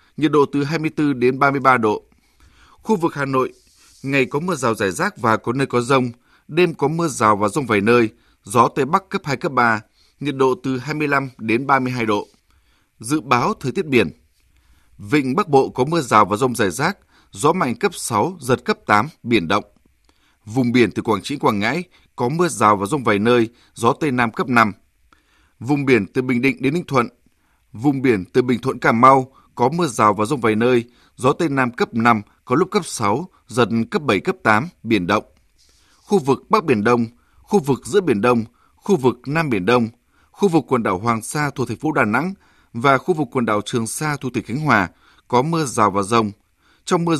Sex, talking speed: male, 215 wpm